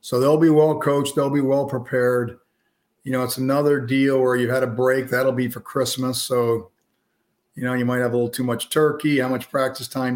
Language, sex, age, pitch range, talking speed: English, male, 50-69, 120-140 Hz, 215 wpm